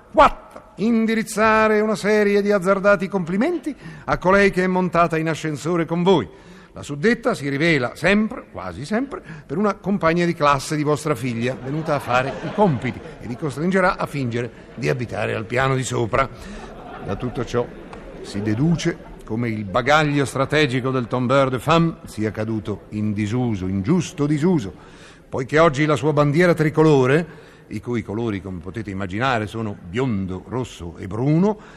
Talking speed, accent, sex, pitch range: 155 wpm, native, male, 125-185 Hz